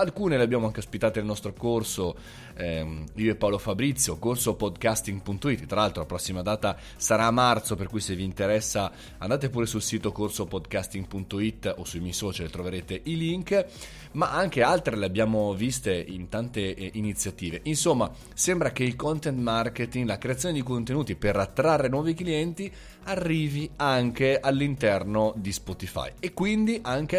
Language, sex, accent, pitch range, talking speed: Italian, male, native, 100-145 Hz, 155 wpm